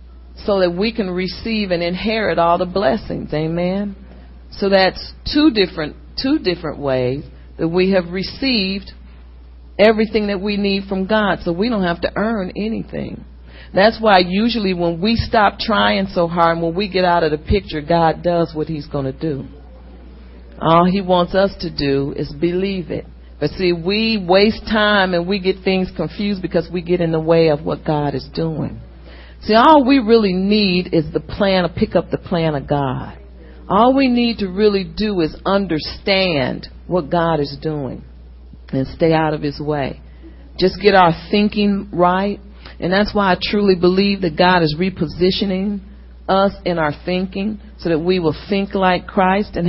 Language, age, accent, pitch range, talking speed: English, 40-59, American, 150-200 Hz, 180 wpm